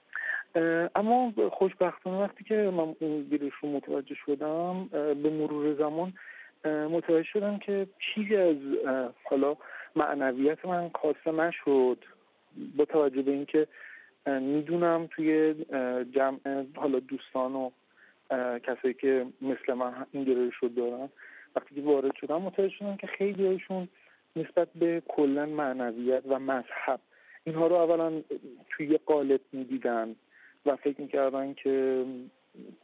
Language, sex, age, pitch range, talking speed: English, male, 40-59, 135-170 Hz, 120 wpm